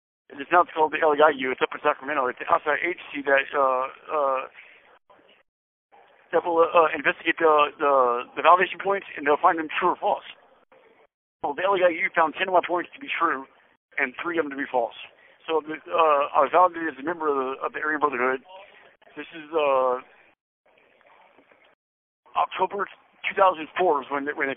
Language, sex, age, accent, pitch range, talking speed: English, male, 50-69, American, 145-185 Hz, 185 wpm